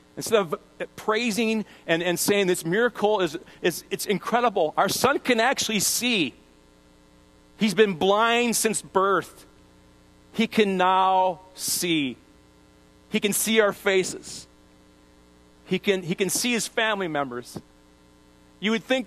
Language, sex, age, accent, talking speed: English, male, 40-59, American, 130 wpm